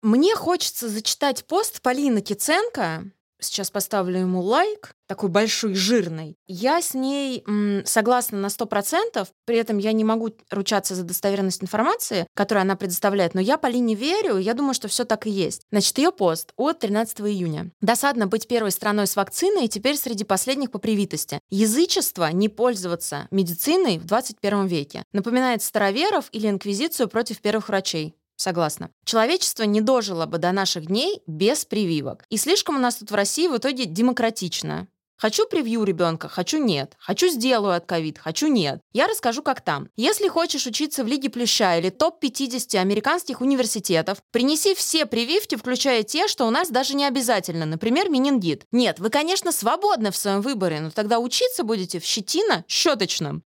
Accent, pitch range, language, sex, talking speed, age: native, 195-270 Hz, Russian, female, 165 wpm, 20-39